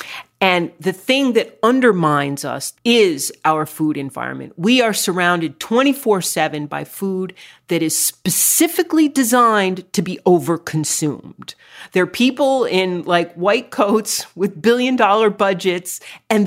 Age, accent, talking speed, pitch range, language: 40-59, American, 130 wpm, 160-215 Hz, English